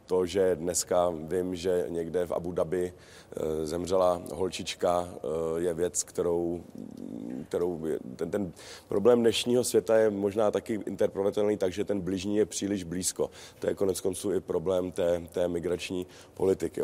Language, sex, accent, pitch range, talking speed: Czech, male, native, 85-95 Hz, 145 wpm